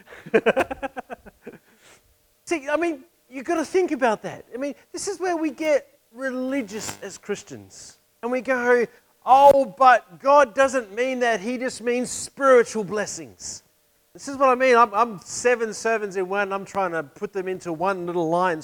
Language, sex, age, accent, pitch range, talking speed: English, male, 40-59, Australian, 230-315 Hz, 175 wpm